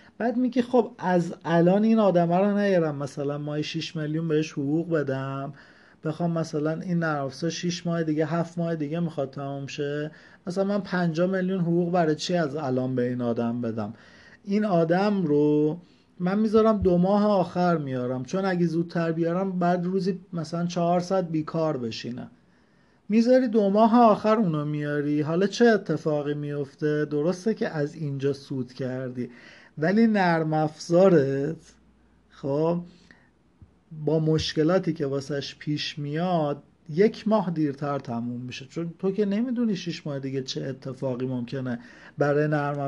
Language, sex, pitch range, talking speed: Persian, male, 145-185 Hz, 145 wpm